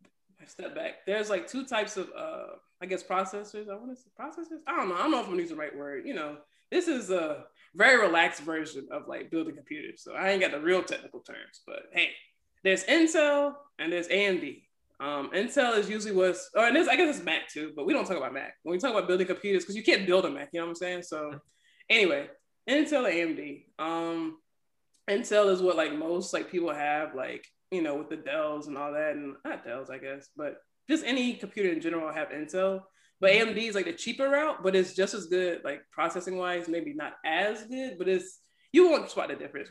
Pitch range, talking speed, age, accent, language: 165-220 Hz, 230 wpm, 20-39, American, English